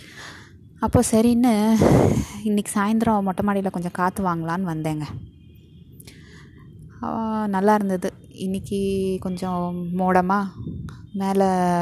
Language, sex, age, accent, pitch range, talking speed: Tamil, female, 20-39, native, 170-200 Hz, 80 wpm